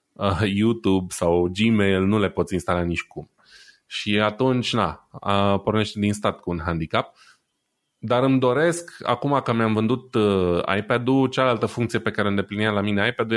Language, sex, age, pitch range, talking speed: Romanian, male, 20-39, 95-120 Hz, 150 wpm